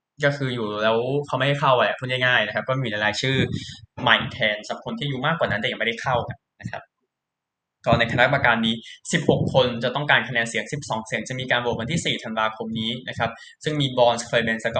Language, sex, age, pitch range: Thai, male, 20-39, 115-135 Hz